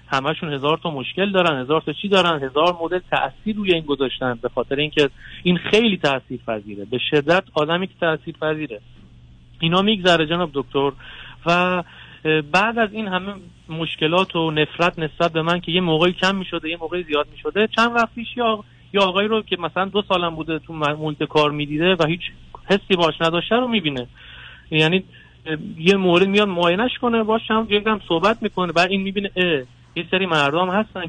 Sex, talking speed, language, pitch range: male, 180 wpm, Persian, 145-190 Hz